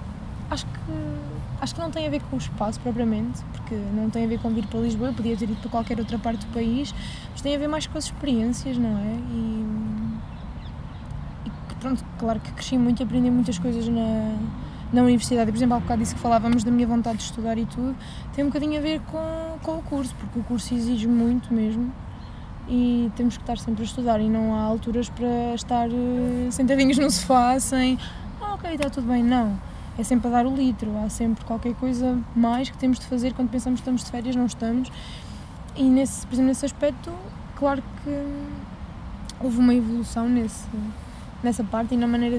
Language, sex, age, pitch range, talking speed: Portuguese, female, 20-39, 230-255 Hz, 205 wpm